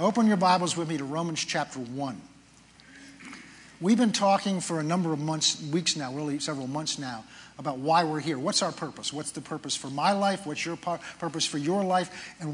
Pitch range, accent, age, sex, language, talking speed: 150-190 Hz, American, 50-69, male, English, 205 wpm